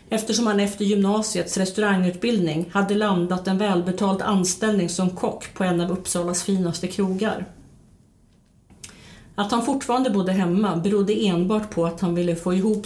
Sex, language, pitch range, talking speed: female, Swedish, 175-205 Hz, 145 wpm